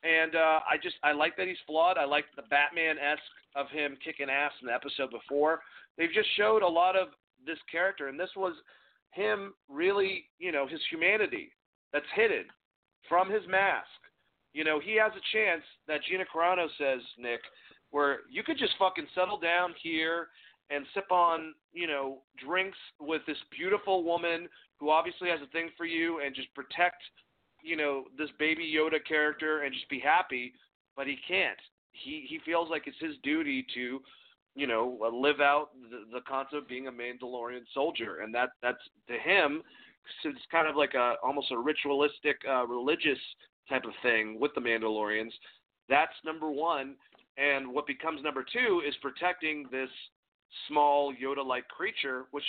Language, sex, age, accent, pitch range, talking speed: English, male, 40-59, American, 135-175 Hz, 175 wpm